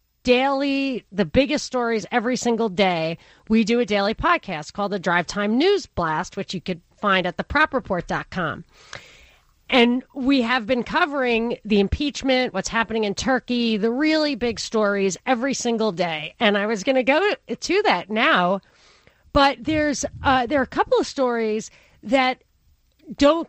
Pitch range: 205-265 Hz